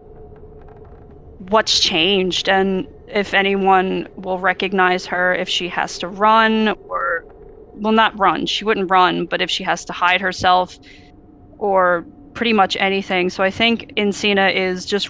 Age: 20-39